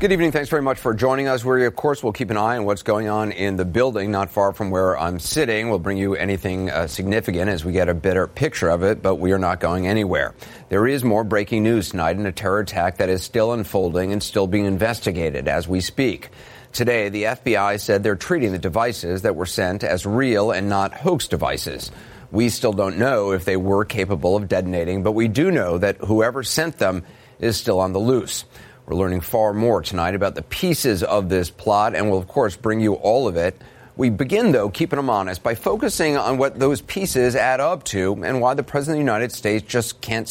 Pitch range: 95-125 Hz